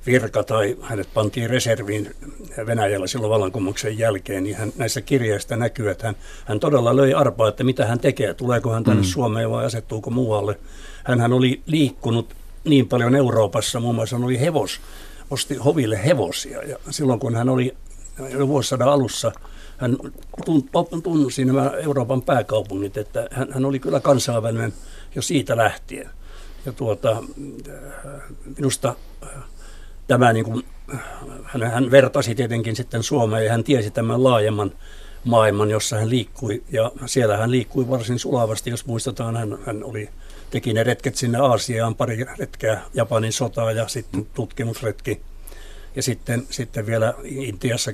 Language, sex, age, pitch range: Finnish, male, 60-79, 110-135 Hz